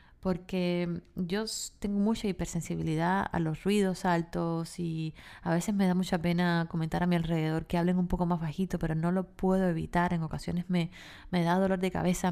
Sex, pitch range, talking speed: female, 165-190 Hz, 190 wpm